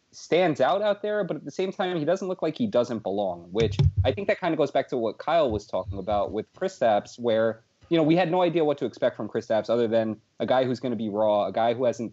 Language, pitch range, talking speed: English, 110-145 Hz, 290 wpm